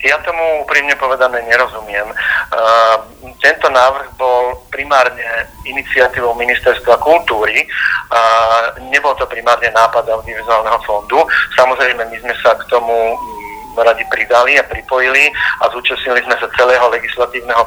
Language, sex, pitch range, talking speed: Slovak, male, 115-130 Hz, 125 wpm